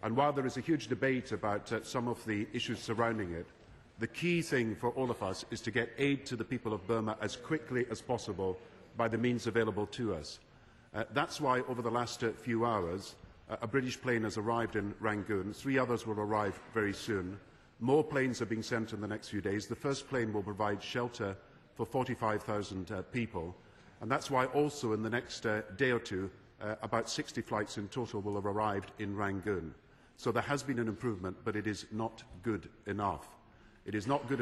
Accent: British